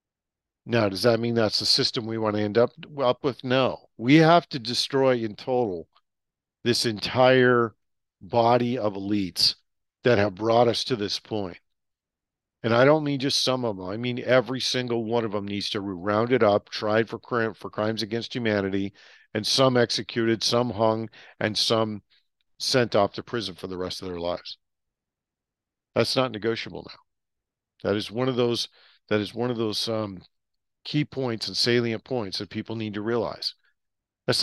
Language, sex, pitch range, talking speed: English, male, 105-125 Hz, 180 wpm